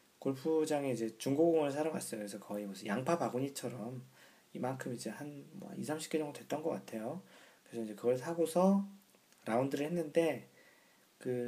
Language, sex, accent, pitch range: Korean, male, native, 115-155 Hz